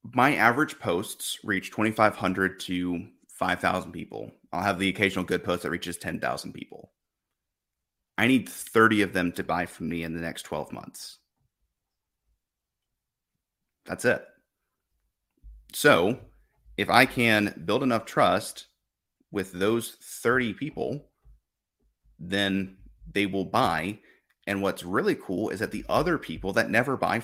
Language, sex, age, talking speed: English, male, 30-49, 135 wpm